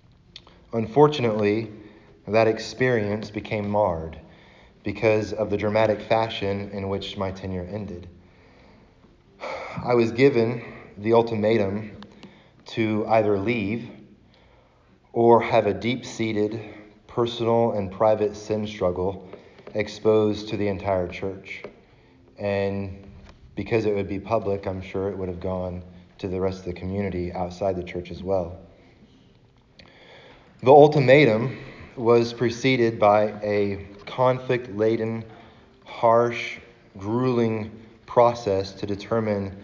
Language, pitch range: English, 100-115 Hz